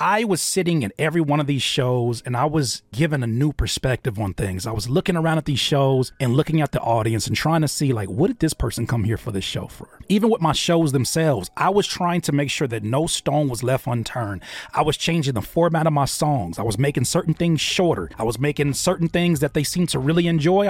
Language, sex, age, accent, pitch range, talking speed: English, male, 30-49, American, 130-165 Hz, 250 wpm